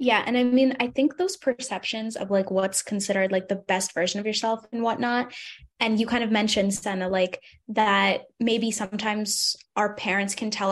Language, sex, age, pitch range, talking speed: English, female, 10-29, 210-250 Hz, 190 wpm